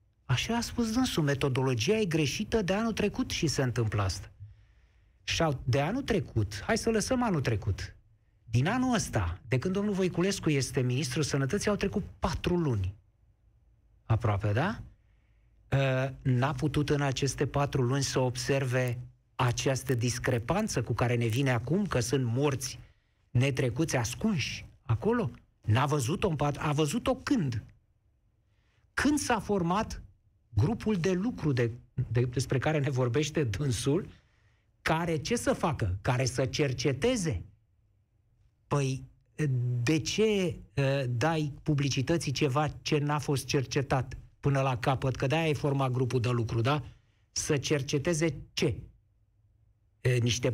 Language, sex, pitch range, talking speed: Romanian, male, 115-155 Hz, 135 wpm